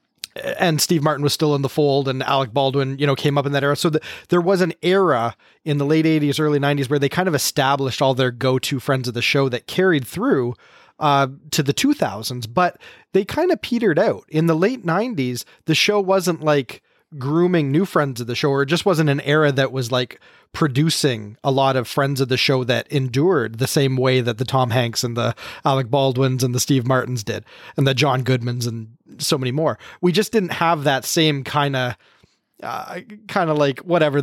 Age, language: 30-49, English